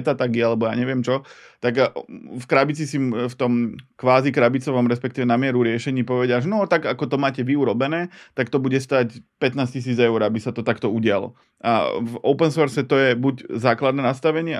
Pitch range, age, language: 115-140 Hz, 20-39, Slovak